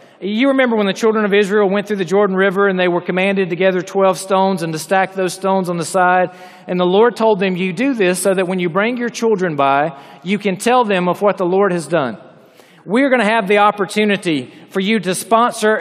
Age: 40-59